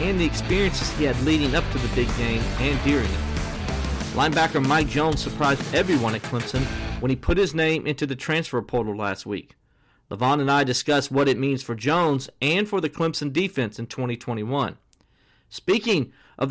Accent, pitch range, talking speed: American, 125-160 Hz, 180 wpm